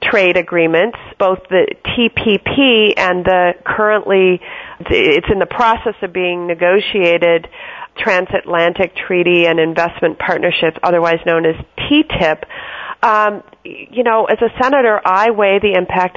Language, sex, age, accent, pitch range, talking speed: English, female, 40-59, American, 175-215 Hz, 125 wpm